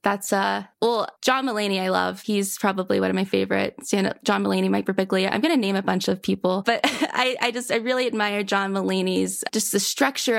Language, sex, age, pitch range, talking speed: English, female, 20-39, 190-245 Hz, 220 wpm